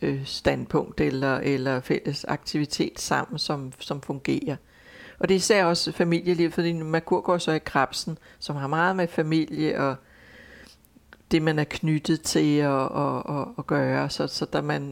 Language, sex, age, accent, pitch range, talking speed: English, female, 60-79, Danish, 135-160 Hz, 160 wpm